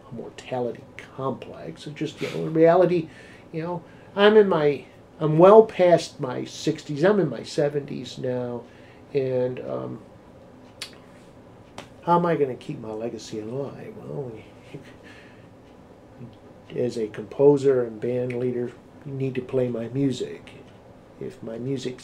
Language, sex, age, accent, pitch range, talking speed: English, male, 50-69, American, 125-150 Hz, 135 wpm